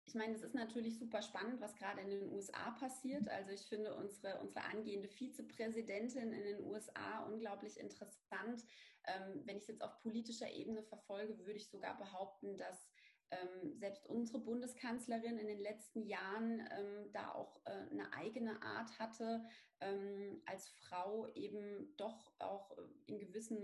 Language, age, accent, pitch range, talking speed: German, 30-49, German, 205-235 Hz, 160 wpm